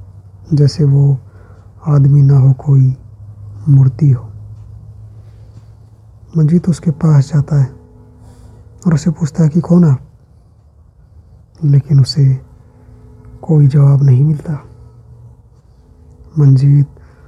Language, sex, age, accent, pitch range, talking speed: Hindi, male, 20-39, native, 110-150 Hz, 90 wpm